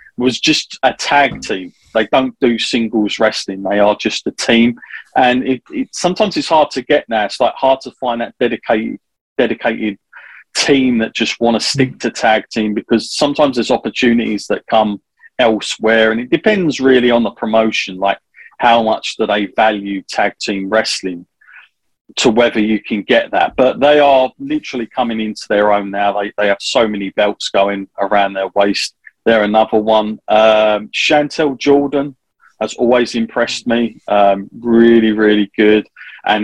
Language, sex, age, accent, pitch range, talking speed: English, male, 30-49, British, 105-130 Hz, 170 wpm